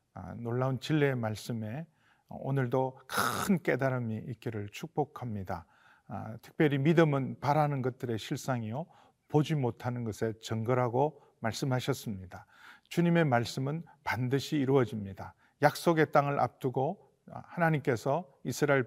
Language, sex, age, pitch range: Korean, male, 40-59, 120-155 Hz